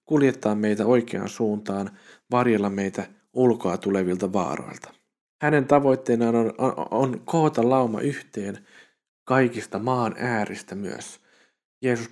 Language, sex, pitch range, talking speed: Finnish, male, 105-145 Hz, 110 wpm